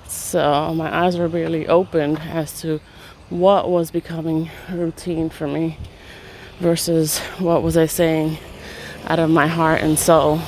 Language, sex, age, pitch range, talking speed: English, female, 20-39, 120-175 Hz, 145 wpm